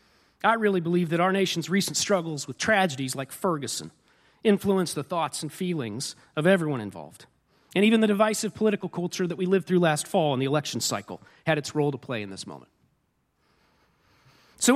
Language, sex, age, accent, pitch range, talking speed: English, male, 40-59, American, 130-205 Hz, 185 wpm